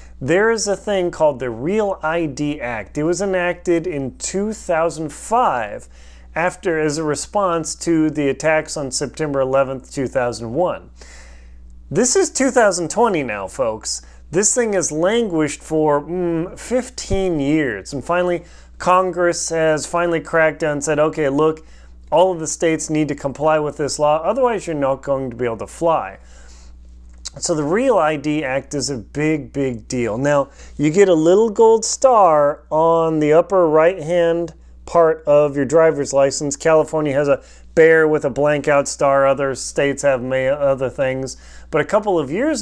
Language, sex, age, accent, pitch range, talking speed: English, male, 30-49, American, 135-175 Hz, 160 wpm